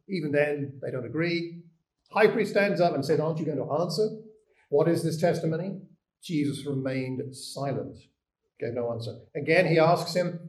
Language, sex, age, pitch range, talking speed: English, male, 50-69, 140-180 Hz, 170 wpm